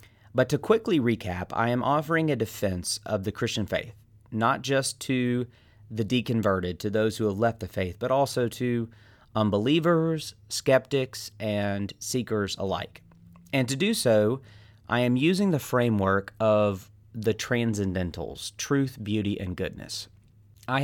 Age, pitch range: 30-49, 100-125 Hz